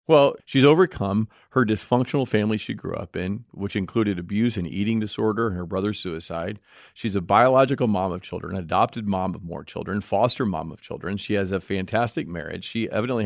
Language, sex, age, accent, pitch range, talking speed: English, male, 40-59, American, 100-120 Hz, 190 wpm